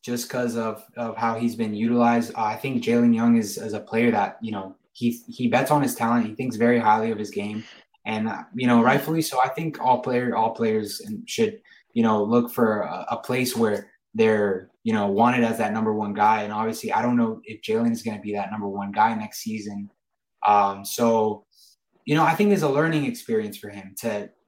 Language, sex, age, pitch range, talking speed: English, male, 20-39, 110-140 Hz, 230 wpm